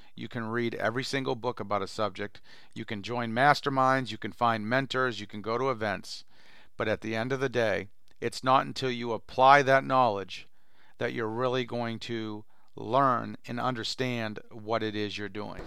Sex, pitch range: male, 115-140 Hz